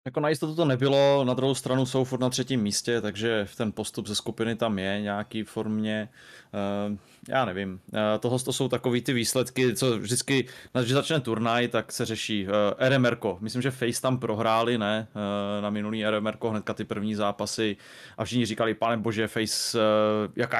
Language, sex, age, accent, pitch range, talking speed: Czech, male, 20-39, native, 105-125 Hz, 185 wpm